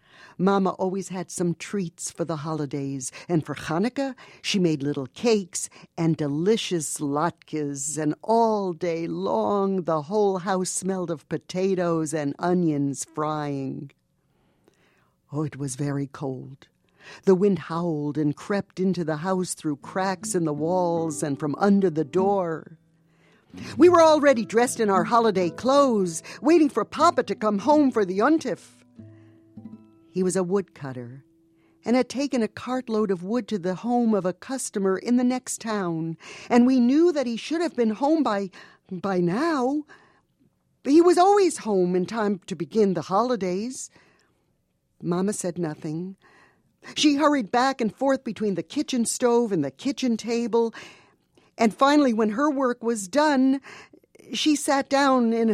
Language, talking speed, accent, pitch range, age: English, 150 wpm, American, 165-240 Hz, 60-79